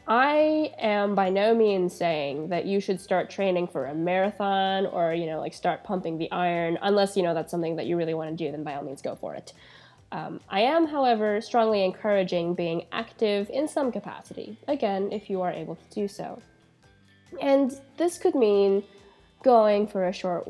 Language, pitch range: English, 175-230 Hz